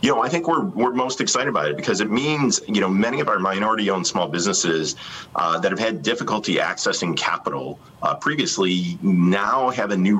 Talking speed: 200 wpm